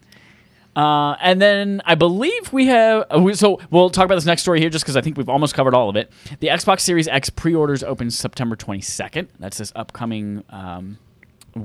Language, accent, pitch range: English, American, 105-145 Hz